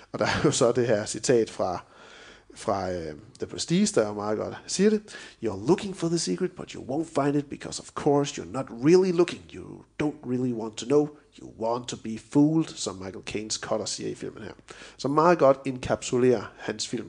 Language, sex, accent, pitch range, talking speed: Danish, male, native, 115-155 Hz, 215 wpm